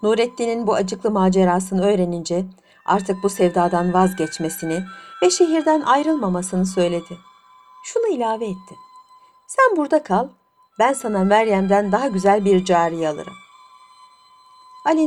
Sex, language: female, Turkish